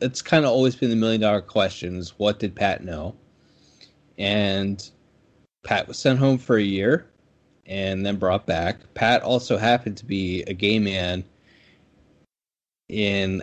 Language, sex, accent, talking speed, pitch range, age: English, male, American, 150 wpm, 90-110 Hz, 20-39